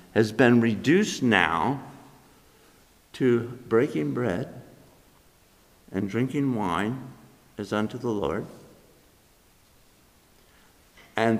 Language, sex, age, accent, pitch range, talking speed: English, male, 60-79, American, 105-135 Hz, 80 wpm